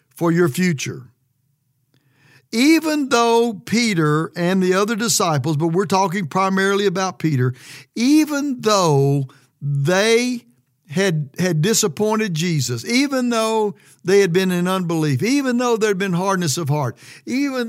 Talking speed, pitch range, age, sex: 130 wpm, 145-205 Hz, 60-79, male